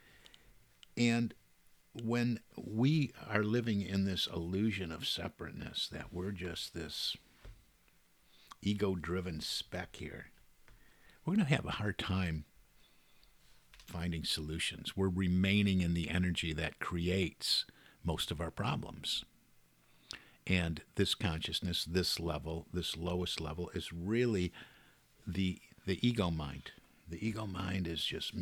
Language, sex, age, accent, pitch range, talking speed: English, male, 50-69, American, 85-110 Hz, 120 wpm